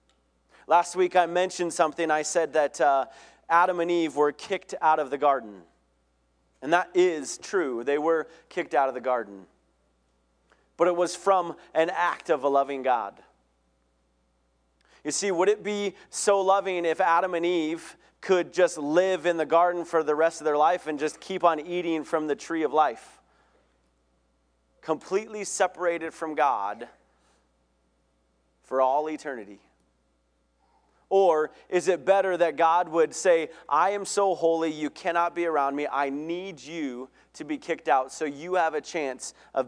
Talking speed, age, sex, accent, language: 165 wpm, 30-49, male, American, English